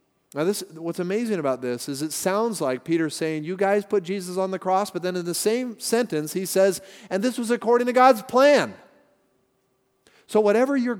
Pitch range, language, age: 175-205 Hz, English, 40-59